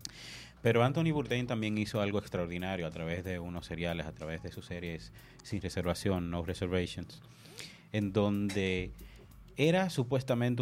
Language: English